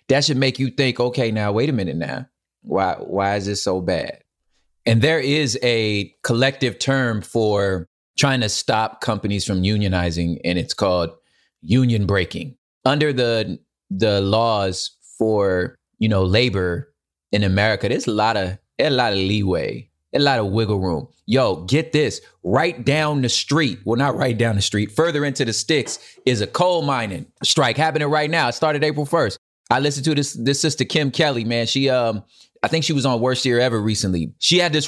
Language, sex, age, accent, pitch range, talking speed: English, male, 20-39, American, 105-145 Hz, 190 wpm